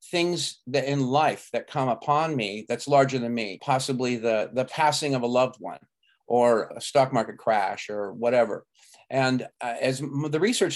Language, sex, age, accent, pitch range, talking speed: English, male, 40-59, American, 115-145 Hz, 180 wpm